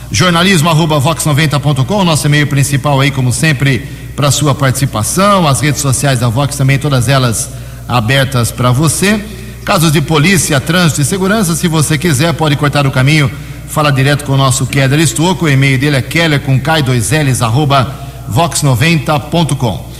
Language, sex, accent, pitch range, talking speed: Portuguese, male, Brazilian, 130-160 Hz, 145 wpm